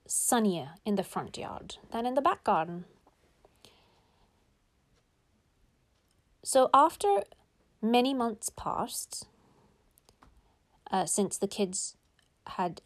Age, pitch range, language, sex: 30-49, 180-270 Hz, English, female